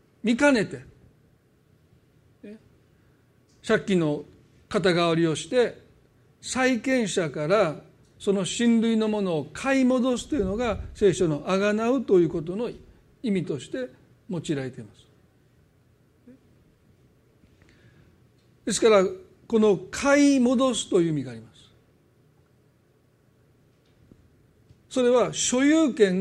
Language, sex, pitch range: Japanese, male, 170-245 Hz